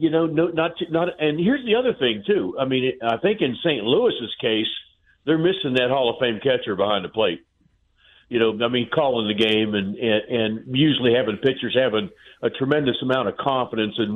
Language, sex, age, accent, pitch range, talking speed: English, male, 50-69, American, 120-170 Hz, 210 wpm